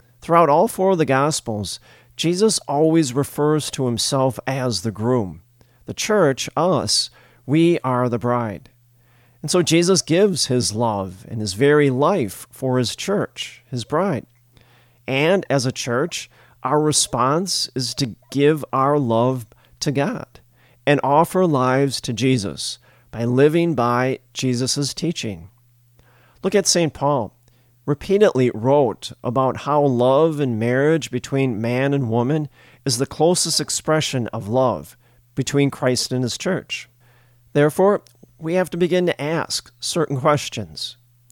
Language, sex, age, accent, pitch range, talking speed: English, male, 40-59, American, 120-155 Hz, 135 wpm